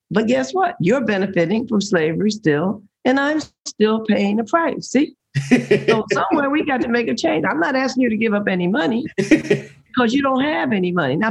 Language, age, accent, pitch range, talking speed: English, 50-69, American, 160-220 Hz, 205 wpm